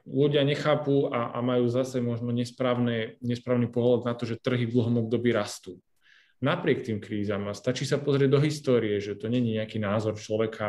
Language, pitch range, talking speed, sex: Slovak, 110-130 Hz, 180 wpm, male